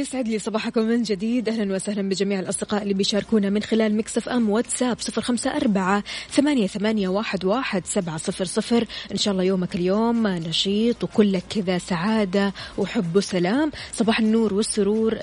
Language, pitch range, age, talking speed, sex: Arabic, 190-225 Hz, 20-39, 160 wpm, female